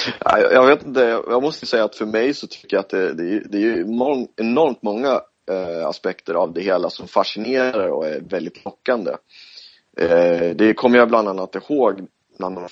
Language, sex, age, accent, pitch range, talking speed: Swedish, male, 30-49, native, 100-130 Hz, 185 wpm